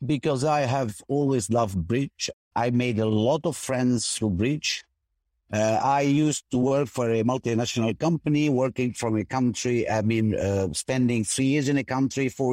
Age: 50-69